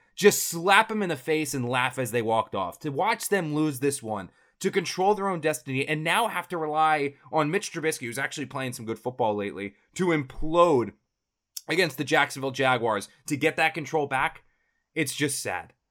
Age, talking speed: 20-39, 195 wpm